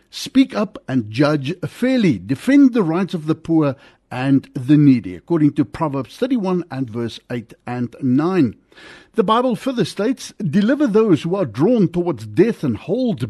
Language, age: English, 60-79